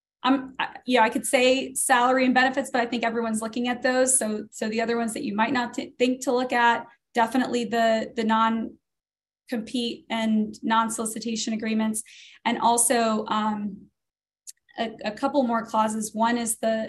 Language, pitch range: English, 220-245 Hz